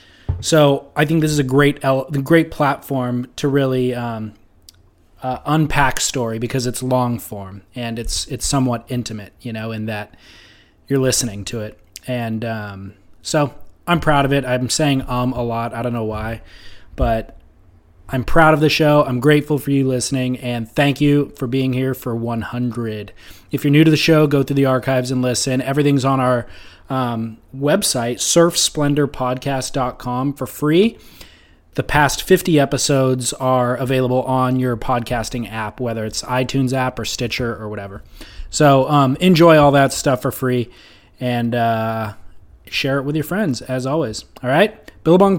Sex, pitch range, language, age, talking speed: male, 115-140 Hz, English, 20-39, 165 wpm